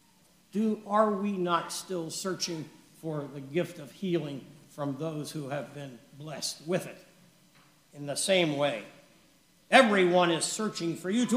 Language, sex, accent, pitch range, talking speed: English, male, American, 170-235 Hz, 155 wpm